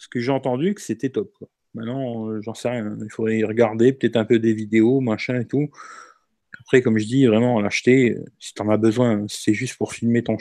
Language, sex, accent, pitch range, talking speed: French, male, French, 120-160 Hz, 235 wpm